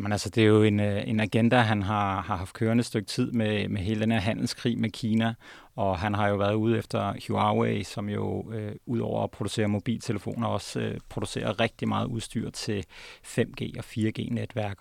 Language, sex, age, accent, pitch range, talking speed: Danish, male, 30-49, native, 105-115 Hz, 200 wpm